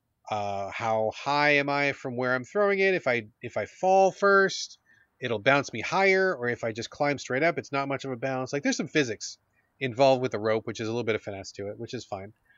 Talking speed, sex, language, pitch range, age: 255 wpm, male, English, 110-155 Hz, 30-49